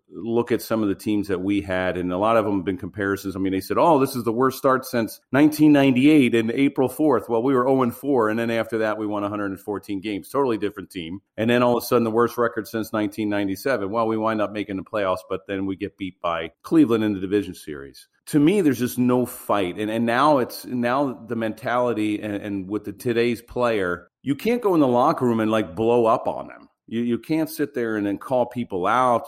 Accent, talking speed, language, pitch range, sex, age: American, 240 wpm, English, 100-125 Hz, male, 40-59